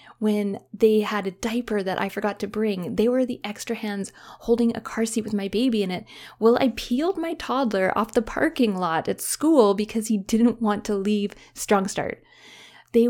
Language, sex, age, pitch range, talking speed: English, female, 20-39, 200-245 Hz, 200 wpm